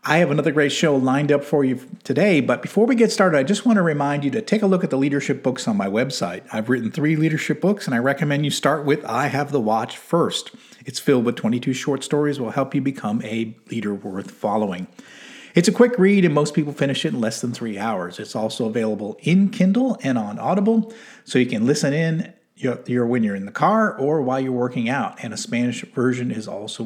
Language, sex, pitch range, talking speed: English, male, 125-175 Hz, 235 wpm